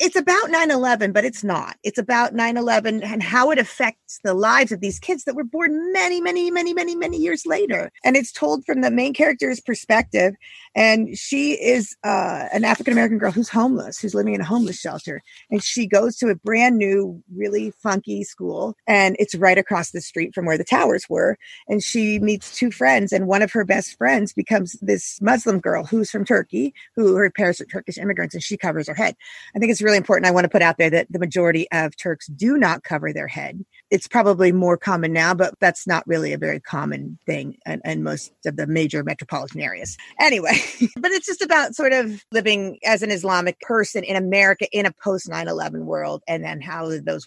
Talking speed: 210 wpm